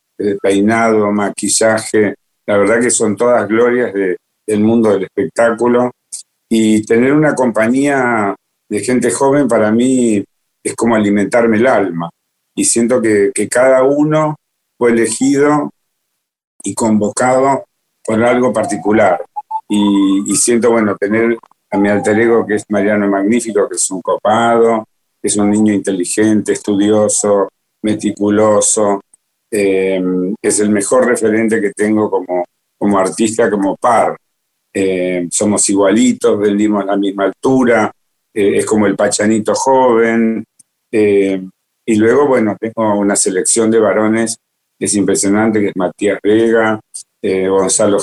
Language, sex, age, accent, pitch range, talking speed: Spanish, male, 50-69, Argentinian, 100-115 Hz, 135 wpm